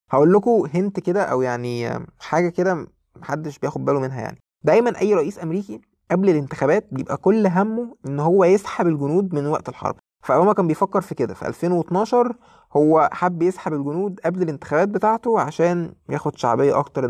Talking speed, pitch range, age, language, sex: 165 wpm, 140-190 Hz, 20-39, Arabic, male